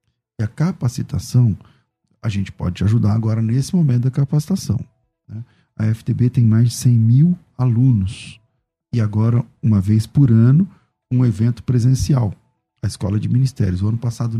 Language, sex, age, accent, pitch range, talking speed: Portuguese, male, 40-59, Brazilian, 110-135 Hz, 155 wpm